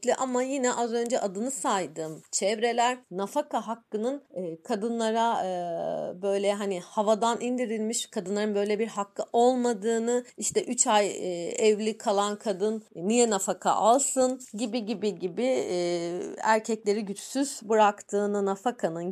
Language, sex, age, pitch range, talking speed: Turkish, female, 40-59, 200-250 Hz, 110 wpm